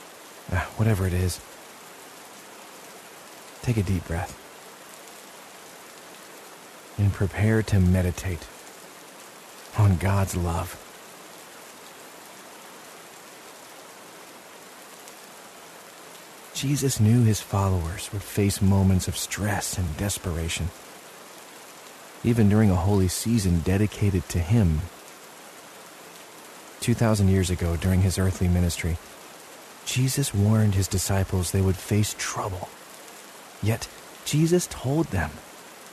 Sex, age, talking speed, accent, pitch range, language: male, 40-59, 85 wpm, American, 90-110 Hz, English